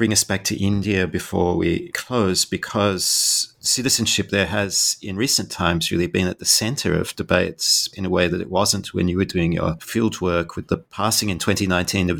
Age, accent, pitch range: 30-49, Australian, 90-105 Hz